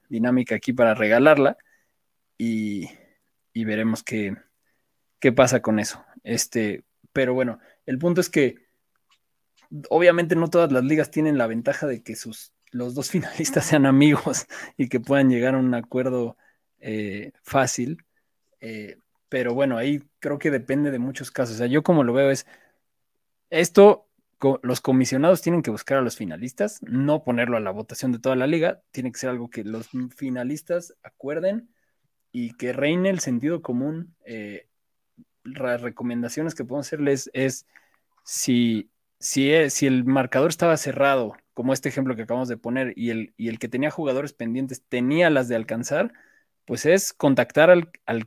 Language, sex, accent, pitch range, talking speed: Spanish, male, Mexican, 120-150 Hz, 165 wpm